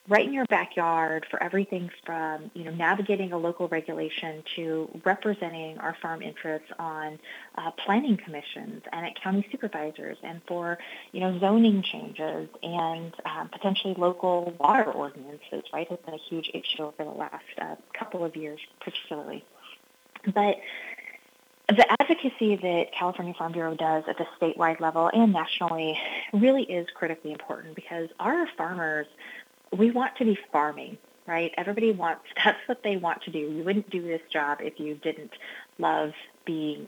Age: 30-49